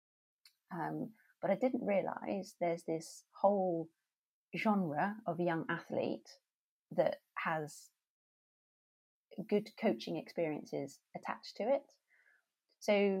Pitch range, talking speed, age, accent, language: 145-200 Hz, 95 wpm, 30-49, British, English